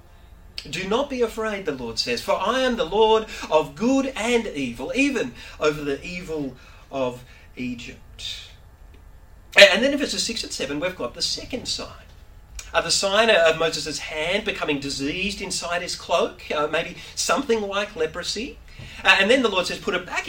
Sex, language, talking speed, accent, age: male, English, 175 wpm, Australian, 40-59